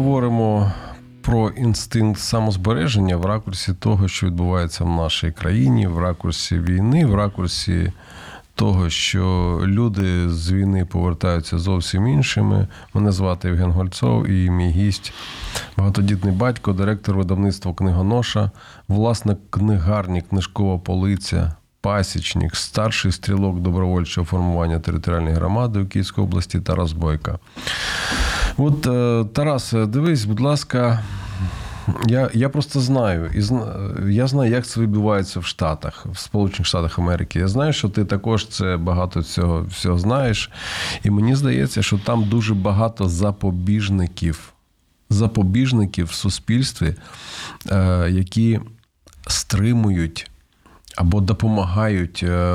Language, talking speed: Ukrainian, 115 wpm